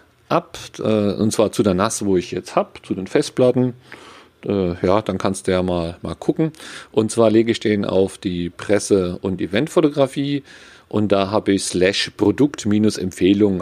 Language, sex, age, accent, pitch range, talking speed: German, male, 40-59, German, 90-115 Hz, 165 wpm